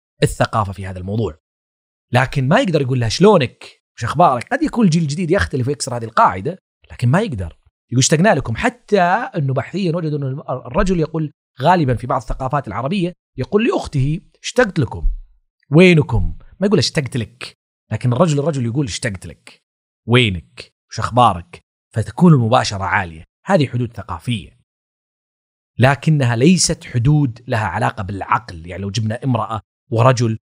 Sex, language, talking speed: male, Arabic, 145 wpm